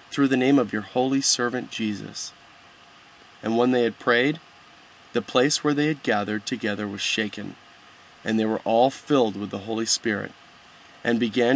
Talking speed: 170 wpm